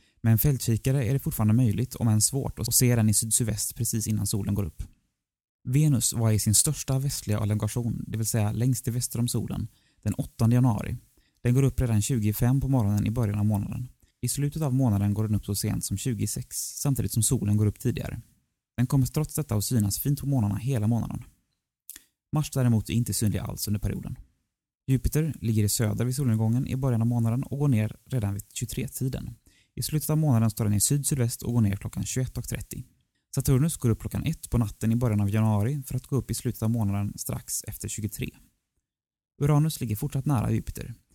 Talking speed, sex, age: 205 wpm, male, 20-39